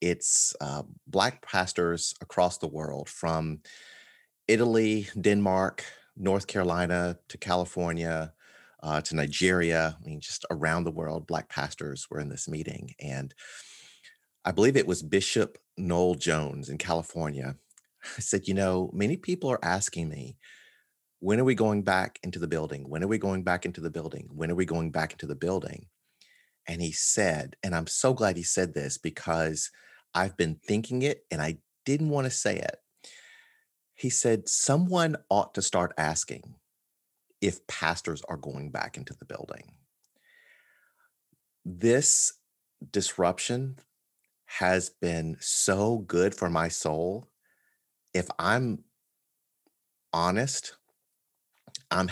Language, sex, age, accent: English, male, 30-49, American